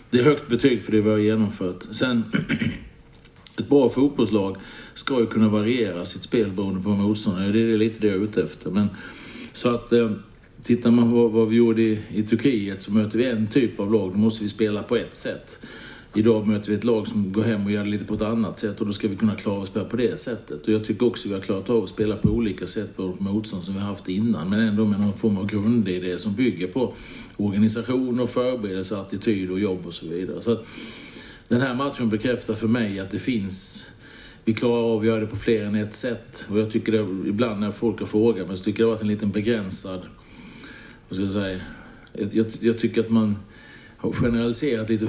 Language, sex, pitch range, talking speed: Swedish, male, 95-115 Hz, 235 wpm